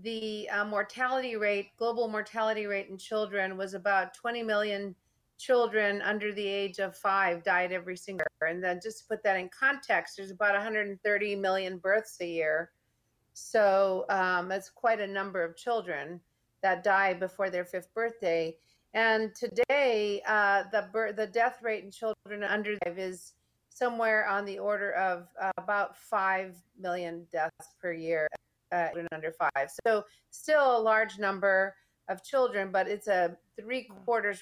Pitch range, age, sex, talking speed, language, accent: 185-220 Hz, 40-59, female, 160 wpm, English, American